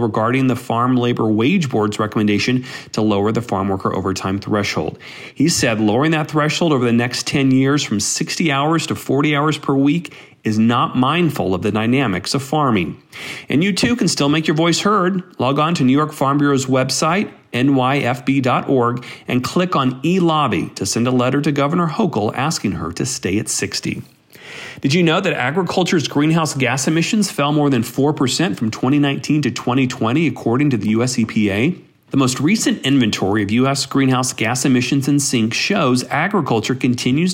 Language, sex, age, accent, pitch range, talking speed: English, male, 40-59, American, 115-150 Hz, 175 wpm